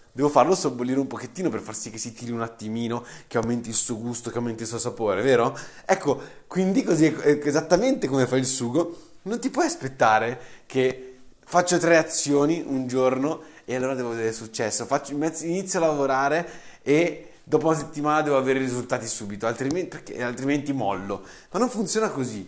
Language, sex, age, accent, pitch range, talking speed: Italian, male, 30-49, native, 125-160 Hz, 180 wpm